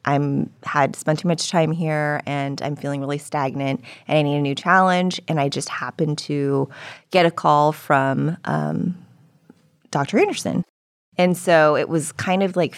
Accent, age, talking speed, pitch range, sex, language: American, 20-39, 175 wpm, 140-170 Hz, female, English